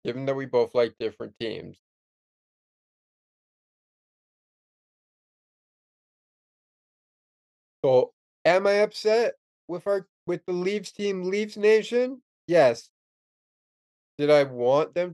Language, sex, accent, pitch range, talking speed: English, male, American, 120-200 Hz, 90 wpm